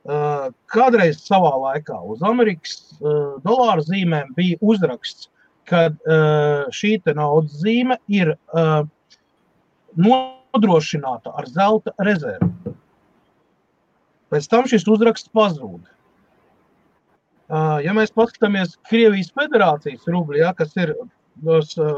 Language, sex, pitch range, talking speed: English, male, 160-225 Hz, 100 wpm